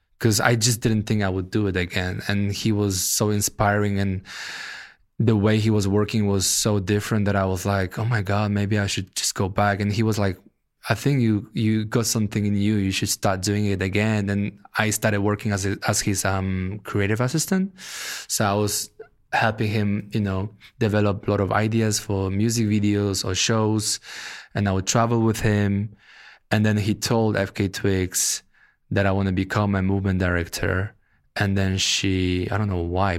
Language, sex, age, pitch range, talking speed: English, male, 20-39, 100-115 Hz, 195 wpm